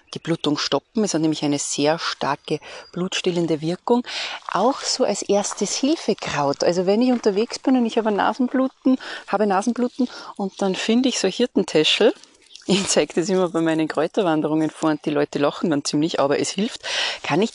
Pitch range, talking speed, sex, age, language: 160-215 Hz, 185 wpm, female, 30-49, German